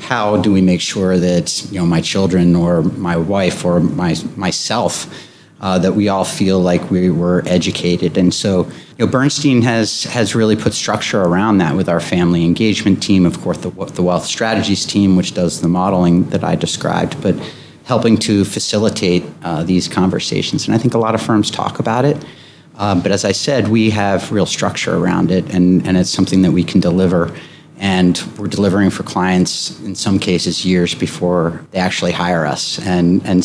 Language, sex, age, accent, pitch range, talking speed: English, male, 30-49, American, 90-105 Hz, 195 wpm